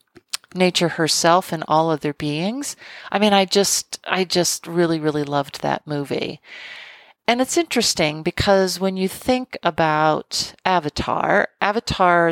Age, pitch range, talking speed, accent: 40-59, 155-200 Hz, 130 wpm, American